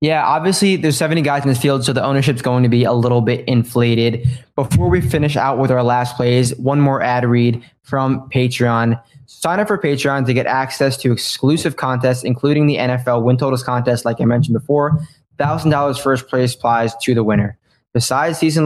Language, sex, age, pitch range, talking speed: English, male, 20-39, 120-140 Hz, 195 wpm